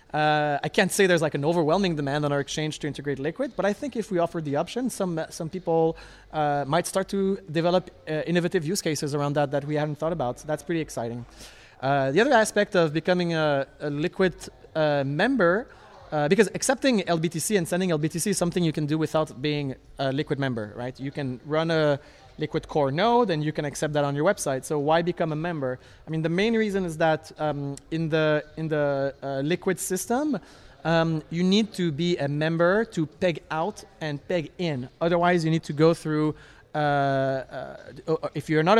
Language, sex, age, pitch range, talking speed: English, male, 30-49, 145-180 Hz, 205 wpm